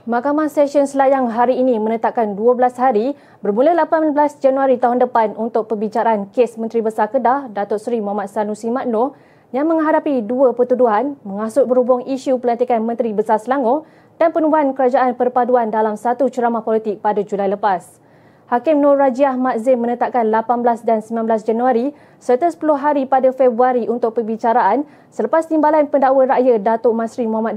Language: Malay